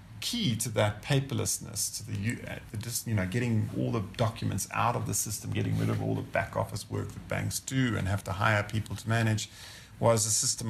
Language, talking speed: English, 215 wpm